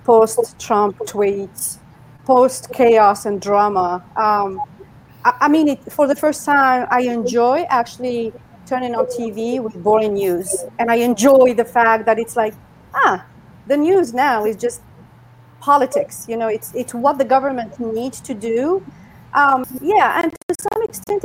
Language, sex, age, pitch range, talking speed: English, female, 40-59, 230-295 Hz, 155 wpm